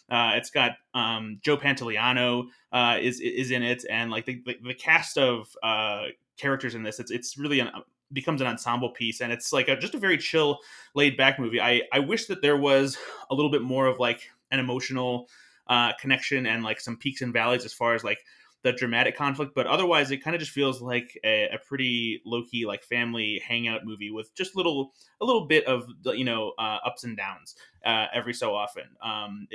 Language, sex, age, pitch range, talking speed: English, male, 20-39, 115-140 Hz, 215 wpm